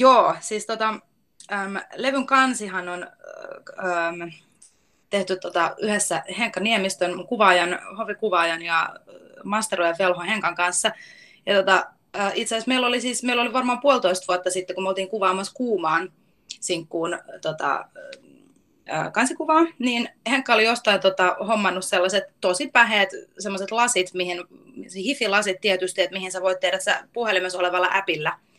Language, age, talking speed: Finnish, 20-39, 140 wpm